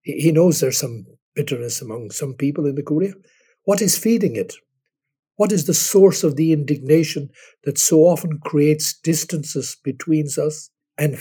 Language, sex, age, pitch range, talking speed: English, male, 60-79, 145-175 Hz, 160 wpm